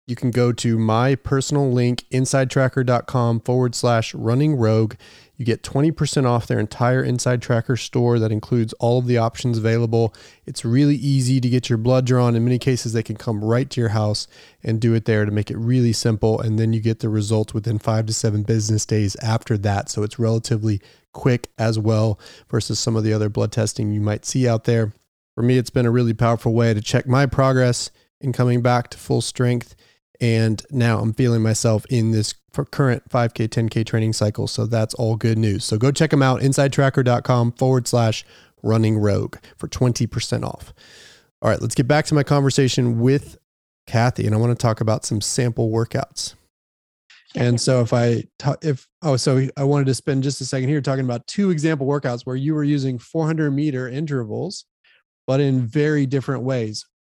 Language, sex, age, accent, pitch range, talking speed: English, male, 30-49, American, 110-130 Hz, 195 wpm